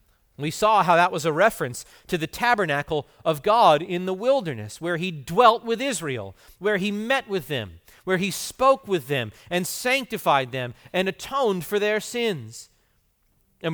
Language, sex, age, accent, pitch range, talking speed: English, male, 40-59, American, 130-205 Hz, 170 wpm